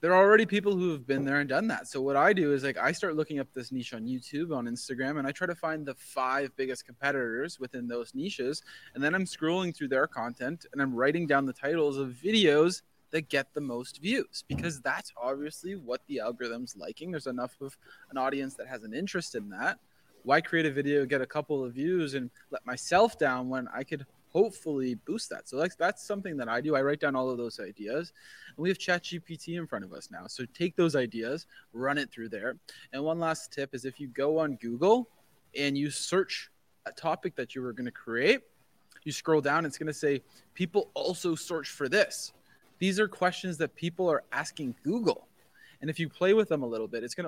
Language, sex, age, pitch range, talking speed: English, male, 20-39, 130-165 Hz, 230 wpm